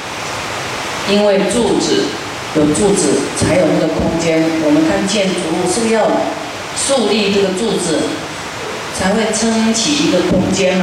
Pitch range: 180-245 Hz